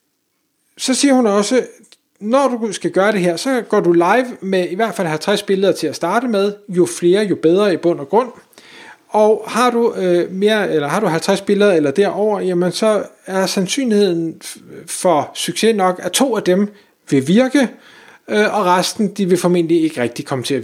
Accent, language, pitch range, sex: native, Danish, 175-215 Hz, male